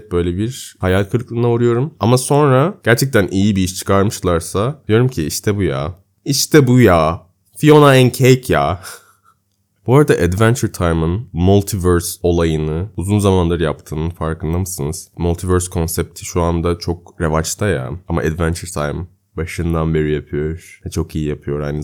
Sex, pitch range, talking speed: male, 85-115 Hz, 145 wpm